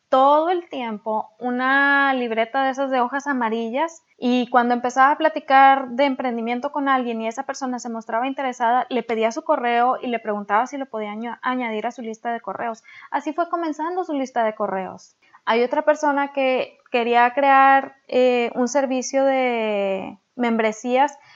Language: Spanish